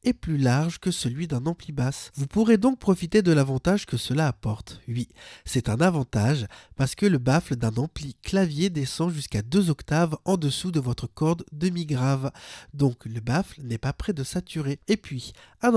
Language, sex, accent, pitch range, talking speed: French, male, French, 125-170 Hz, 185 wpm